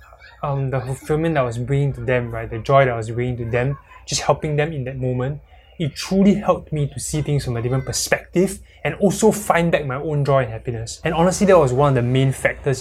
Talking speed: 250 wpm